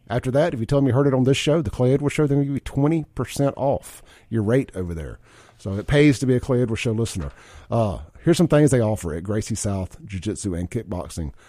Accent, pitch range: American, 105-125 Hz